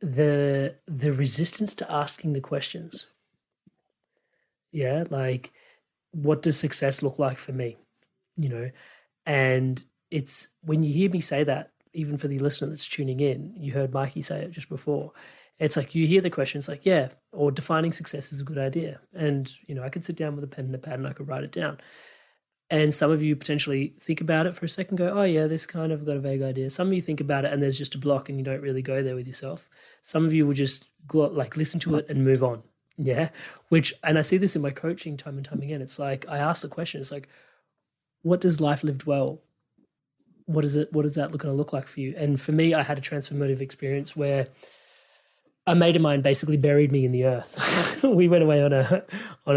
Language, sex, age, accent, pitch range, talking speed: English, male, 30-49, Australian, 135-160 Hz, 235 wpm